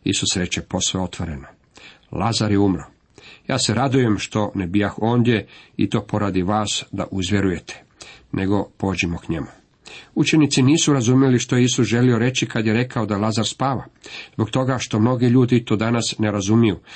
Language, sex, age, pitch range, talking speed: Croatian, male, 50-69, 100-125 Hz, 165 wpm